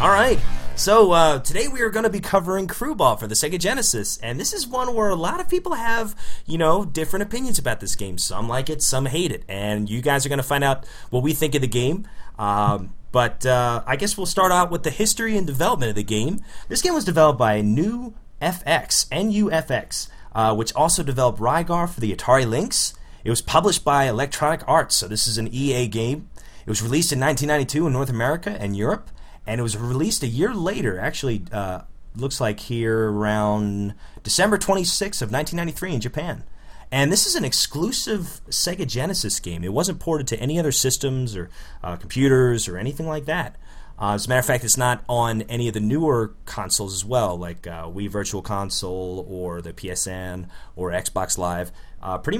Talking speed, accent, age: 200 wpm, American, 30-49